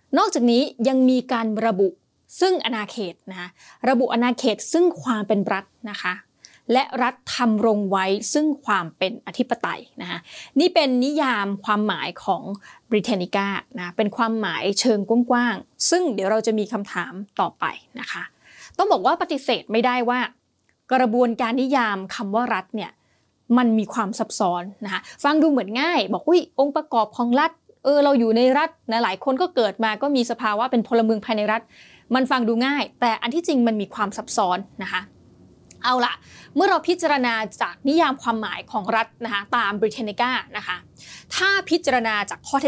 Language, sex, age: Thai, female, 20-39